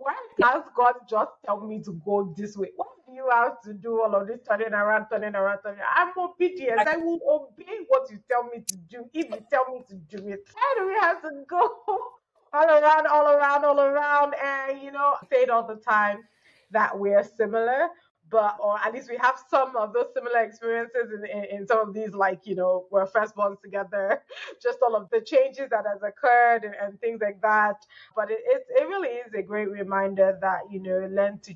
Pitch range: 200-275 Hz